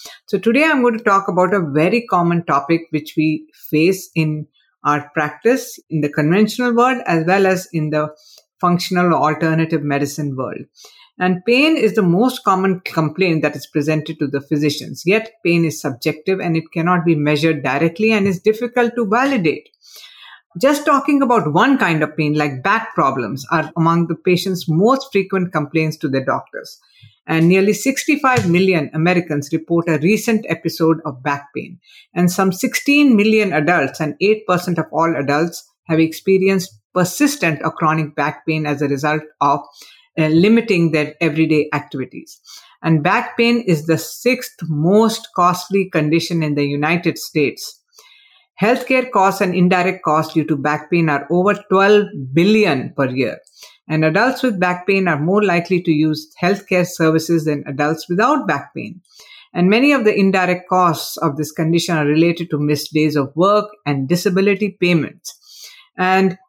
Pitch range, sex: 155-210 Hz, female